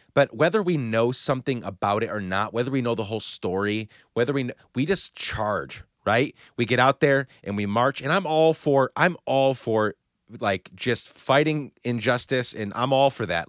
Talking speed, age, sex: 205 wpm, 30-49, male